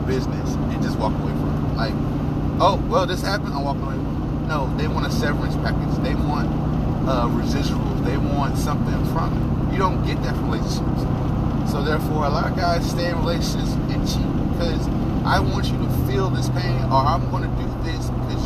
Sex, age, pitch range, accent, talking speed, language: male, 30-49, 115-130 Hz, American, 205 wpm, English